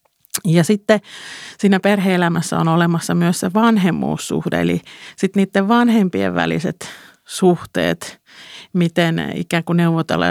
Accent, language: native, Finnish